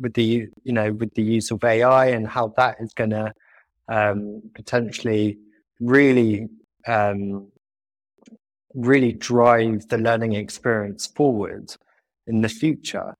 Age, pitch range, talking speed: 20-39, 105-125 Hz, 125 wpm